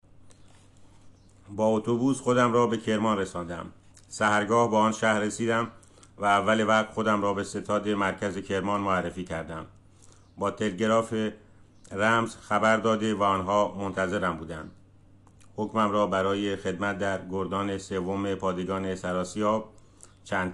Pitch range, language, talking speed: 95-105 Hz, Persian, 125 wpm